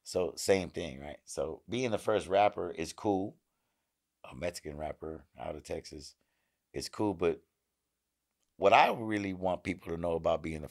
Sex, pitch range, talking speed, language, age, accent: male, 75-95 Hz, 170 wpm, English, 50-69, American